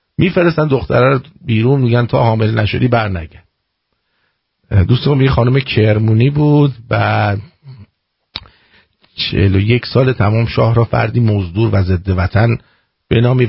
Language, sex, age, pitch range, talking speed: English, male, 50-69, 100-135 Hz, 120 wpm